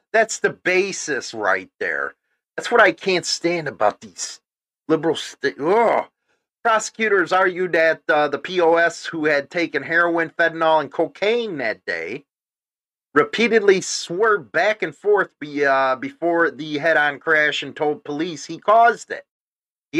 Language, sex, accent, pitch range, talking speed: English, male, American, 140-180 Hz, 140 wpm